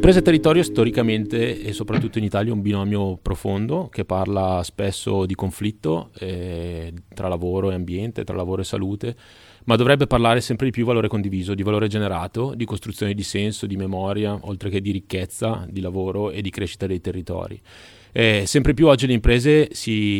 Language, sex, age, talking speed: Italian, male, 30-49, 185 wpm